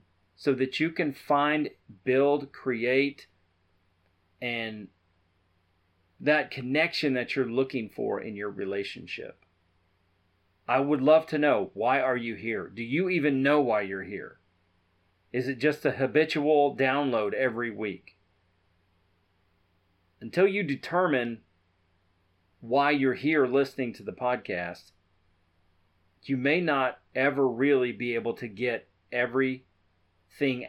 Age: 40-59